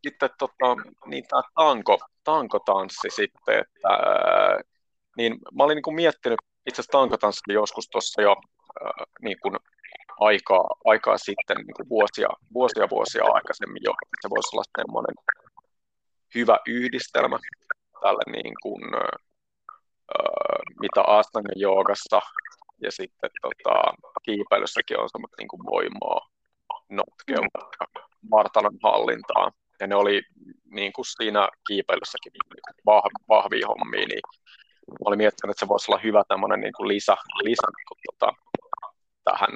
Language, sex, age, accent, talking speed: Finnish, male, 30-49, native, 115 wpm